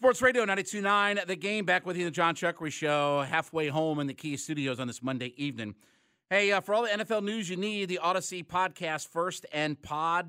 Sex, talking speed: male, 220 wpm